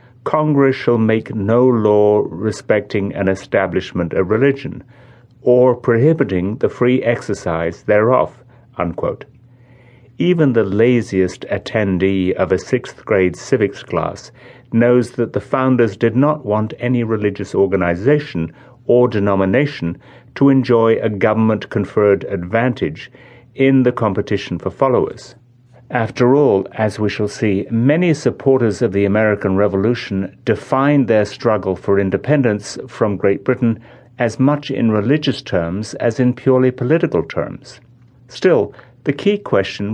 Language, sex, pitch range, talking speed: English, male, 105-130 Hz, 125 wpm